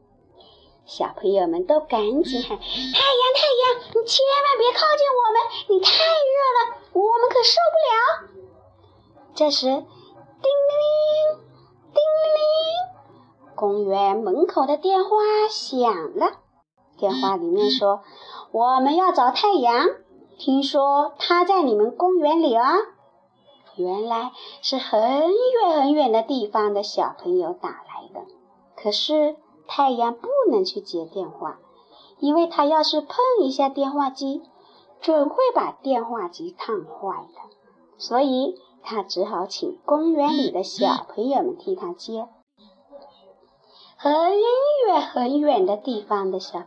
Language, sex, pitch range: Chinese, male, 250-370 Hz